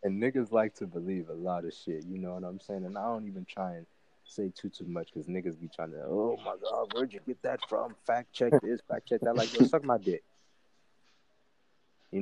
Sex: male